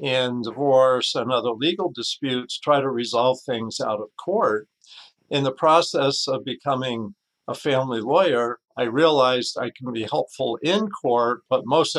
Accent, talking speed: American, 155 wpm